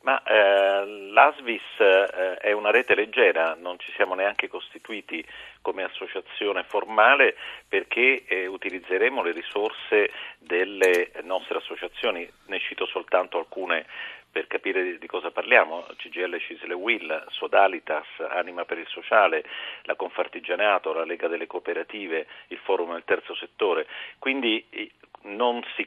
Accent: native